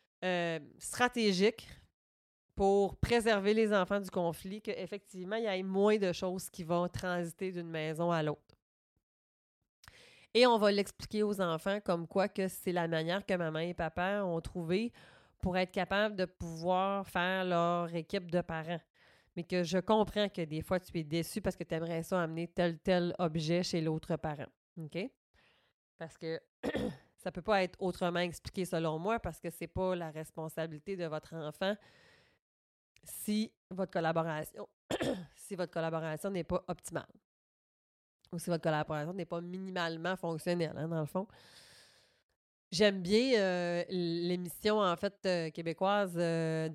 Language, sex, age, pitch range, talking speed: French, female, 30-49, 165-190 Hz, 155 wpm